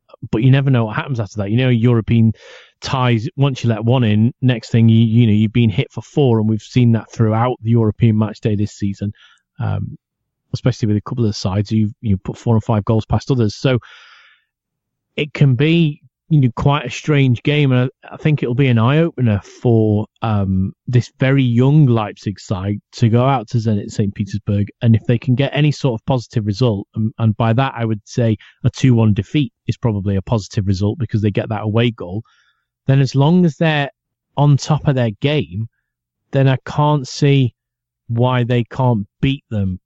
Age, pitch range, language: 30-49, 110-135 Hz, English